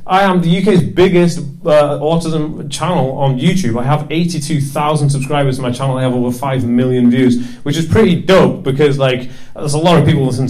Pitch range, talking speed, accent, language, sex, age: 130-160 Hz, 205 wpm, British, English, male, 30-49